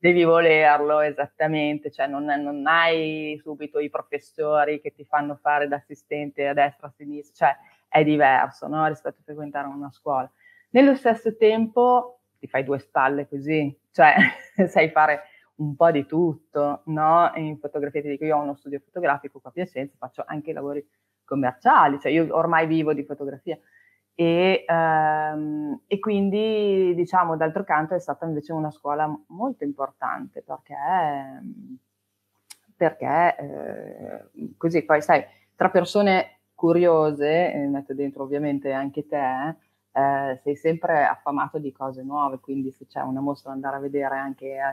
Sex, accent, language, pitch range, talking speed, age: female, native, Italian, 140-165 Hz, 155 wpm, 30-49